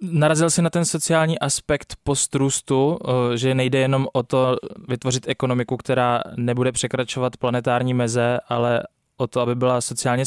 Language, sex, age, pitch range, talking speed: Czech, male, 20-39, 125-140 Hz, 145 wpm